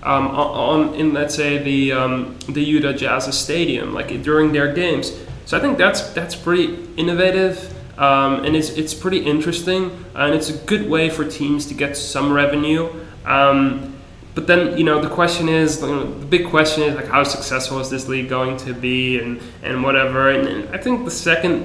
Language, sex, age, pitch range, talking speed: English, male, 20-39, 135-160 Hz, 200 wpm